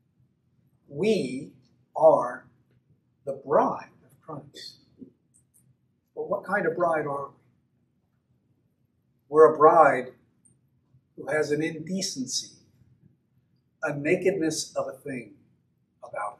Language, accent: English, American